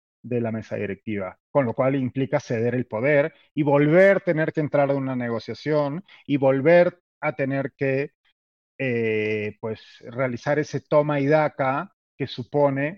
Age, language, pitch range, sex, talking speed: 30-49, Spanish, 120-155 Hz, male, 155 wpm